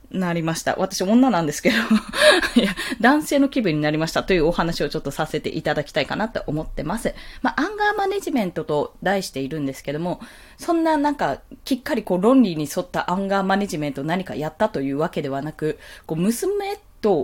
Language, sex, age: Japanese, female, 20-39